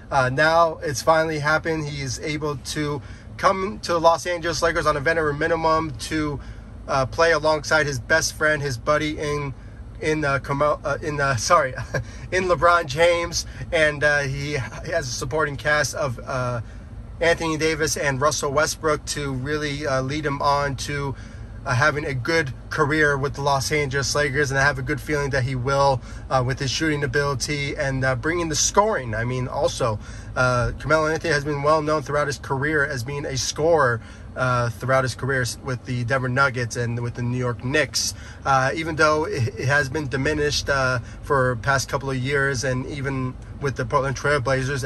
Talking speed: 185 wpm